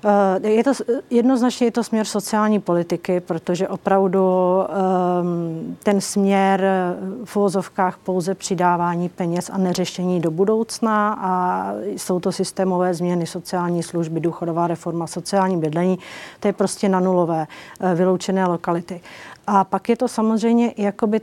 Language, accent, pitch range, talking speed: Czech, native, 175-200 Hz, 130 wpm